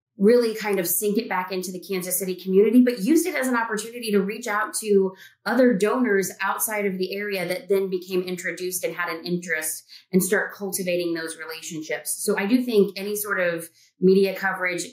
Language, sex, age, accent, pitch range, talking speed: English, female, 30-49, American, 175-215 Hz, 195 wpm